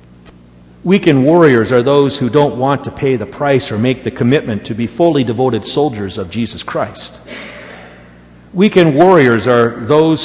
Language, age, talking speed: English, 50-69, 160 wpm